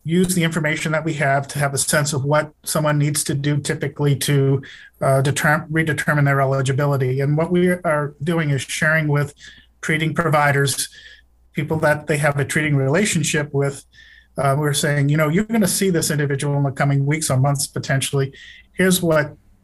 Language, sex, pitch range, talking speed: English, male, 140-155 Hz, 185 wpm